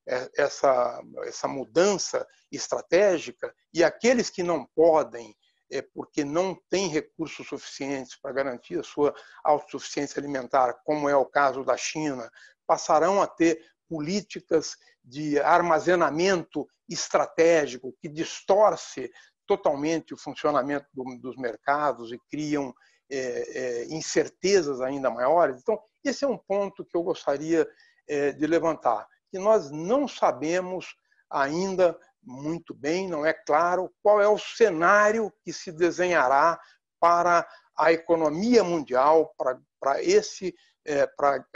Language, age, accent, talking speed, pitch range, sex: Portuguese, 60-79, Brazilian, 115 wpm, 140-190 Hz, male